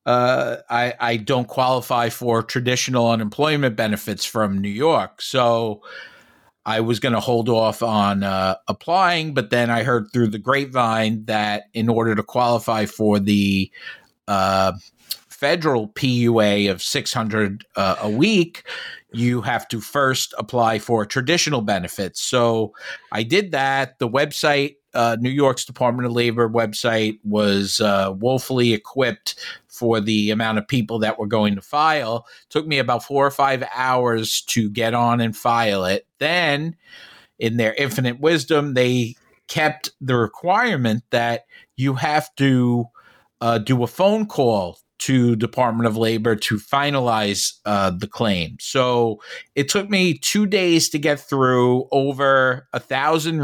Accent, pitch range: American, 110-135 Hz